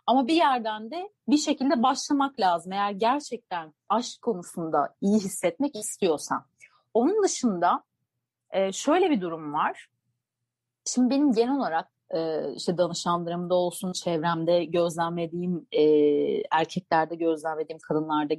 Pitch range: 175-260 Hz